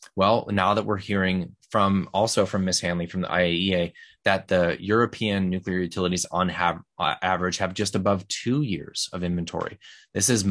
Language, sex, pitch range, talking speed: English, male, 90-110 Hz, 170 wpm